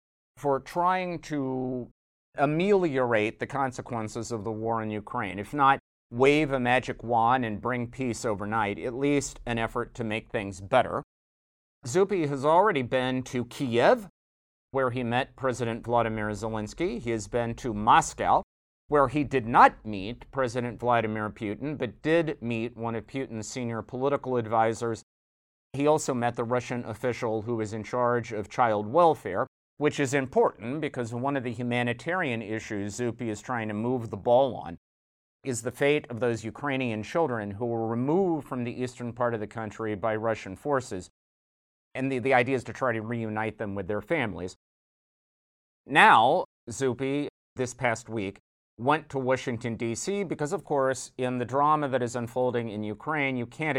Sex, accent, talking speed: male, American, 165 wpm